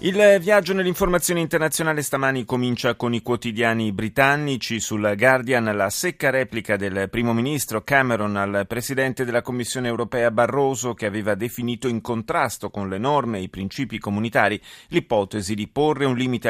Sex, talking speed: male, 155 wpm